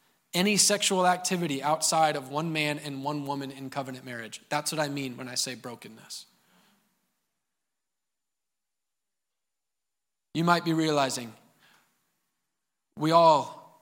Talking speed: 115 wpm